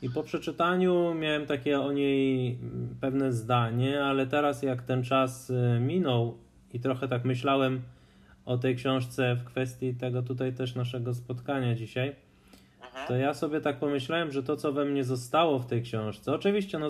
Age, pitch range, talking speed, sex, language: 20-39, 120-145 Hz, 165 wpm, male, Polish